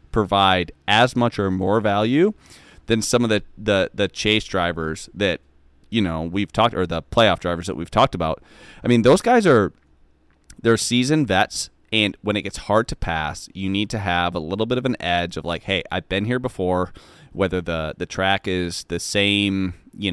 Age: 30-49